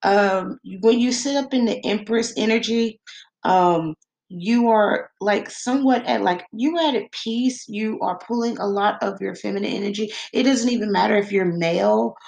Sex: female